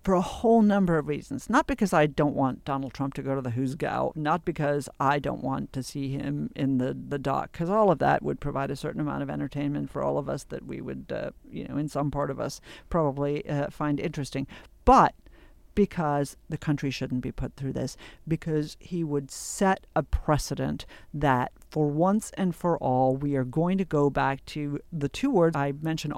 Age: 50-69